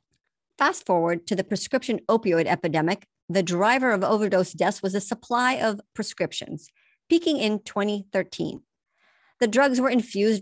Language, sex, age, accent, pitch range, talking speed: English, male, 50-69, American, 185-230 Hz, 140 wpm